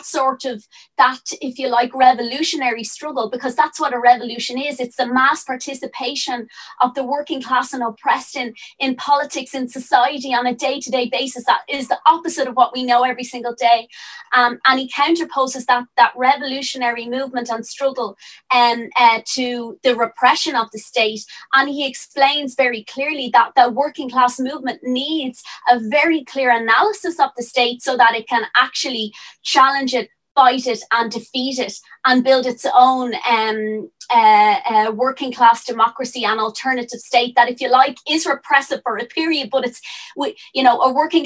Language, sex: English, female